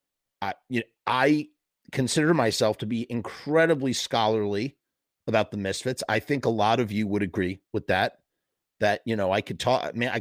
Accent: American